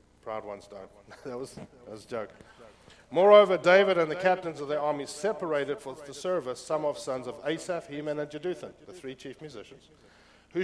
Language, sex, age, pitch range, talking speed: English, male, 50-69, 130-180 Hz, 190 wpm